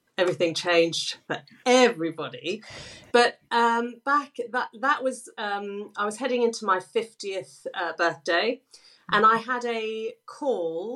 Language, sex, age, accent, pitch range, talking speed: English, female, 40-59, British, 180-240 Hz, 130 wpm